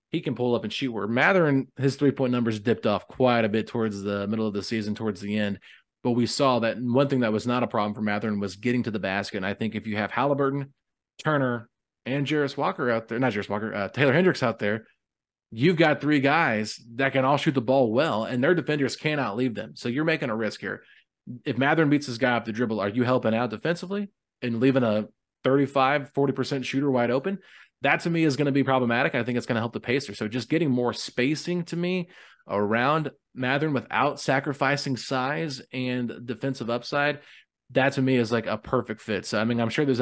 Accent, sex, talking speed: American, male, 230 wpm